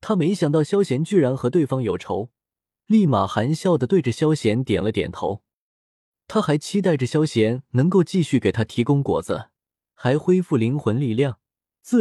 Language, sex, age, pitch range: Chinese, male, 20-39, 115-165 Hz